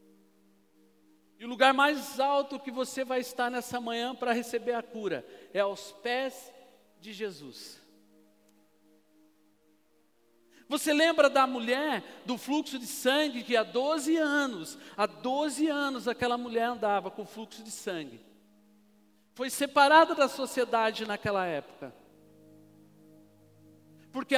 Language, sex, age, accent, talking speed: Portuguese, male, 50-69, Brazilian, 120 wpm